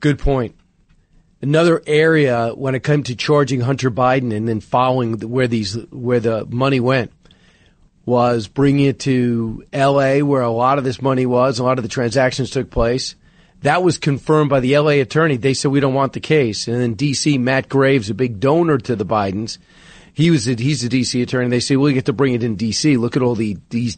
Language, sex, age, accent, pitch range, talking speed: English, male, 40-59, American, 125-160 Hz, 210 wpm